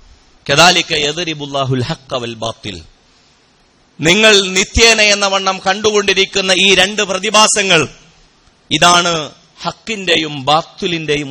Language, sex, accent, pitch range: Malayalam, male, native, 145-200 Hz